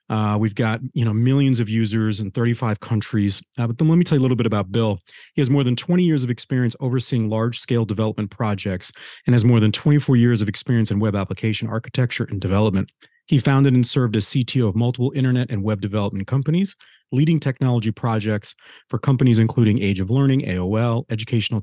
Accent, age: American, 30-49